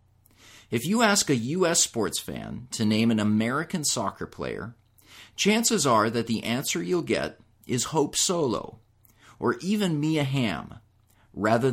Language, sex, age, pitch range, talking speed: English, male, 30-49, 105-145 Hz, 145 wpm